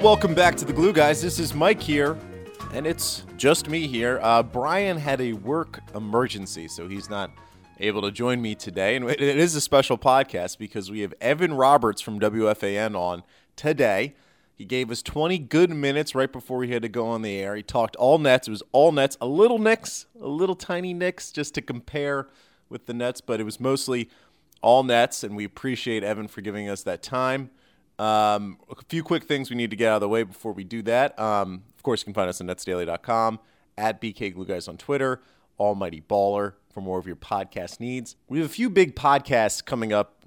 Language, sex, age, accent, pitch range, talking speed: English, male, 30-49, American, 105-140 Hz, 210 wpm